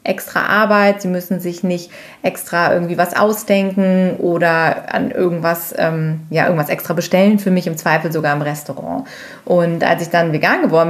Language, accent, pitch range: German, German, 165-205 Hz